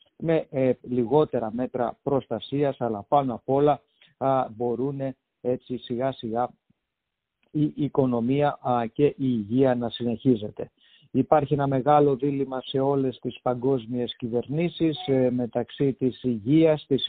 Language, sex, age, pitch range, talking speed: English, male, 50-69, 125-145 Hz, 120 wpm